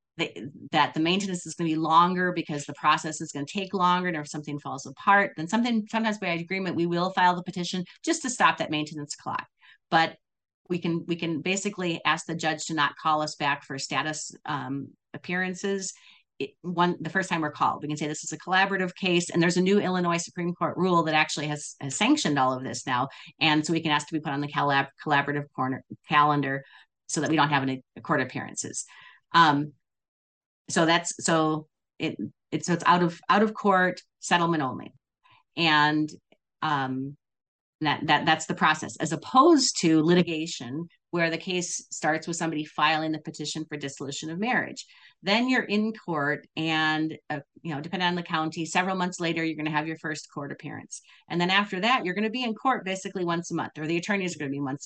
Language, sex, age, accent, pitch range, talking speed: English, female, 40-59, American, 150-185 Hz, 210 wpm